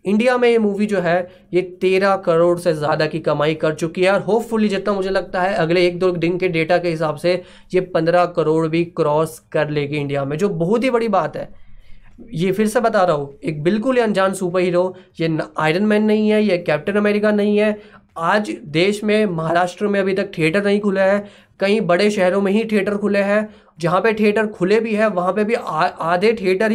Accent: native